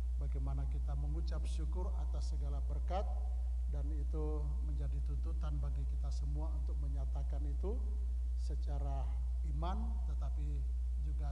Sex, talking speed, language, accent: male, 110 wpm, Indonesian, native